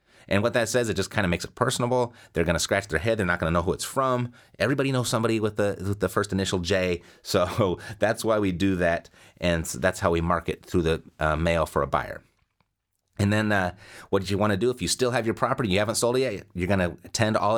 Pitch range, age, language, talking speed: 90-110 Hz, 30-49, English, 265 wpm